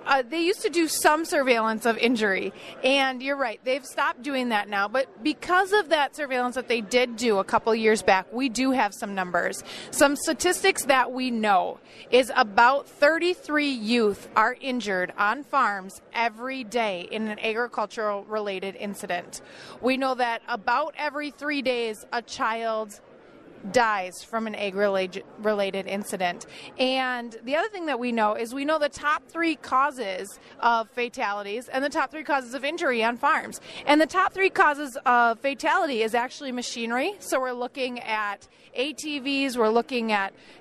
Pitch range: 220-280 Hz